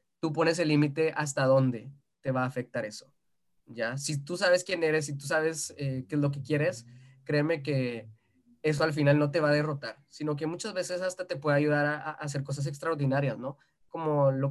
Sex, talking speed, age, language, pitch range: male, 215 wpm, 20-39, Spanish, 140-165 Hz